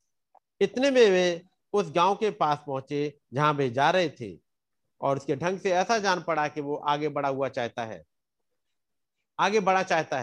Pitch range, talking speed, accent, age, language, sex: 140-200 Hz, 175 wpm, native, 50-69, Hindi, male